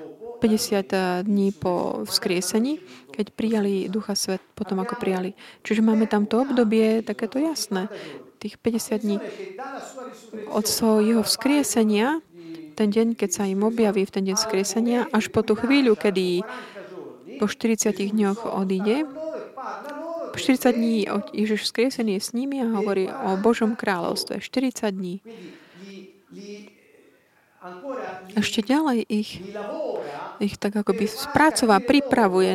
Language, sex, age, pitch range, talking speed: Slovak, female, 30-49, 200-240 Hz, 120 wpm